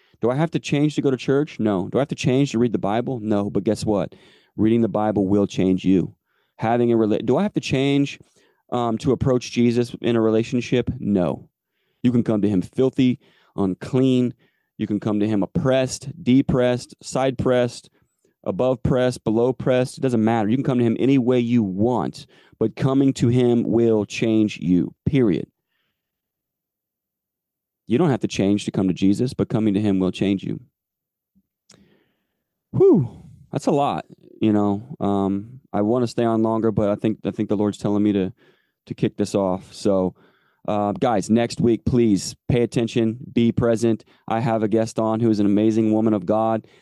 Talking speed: 190 wpm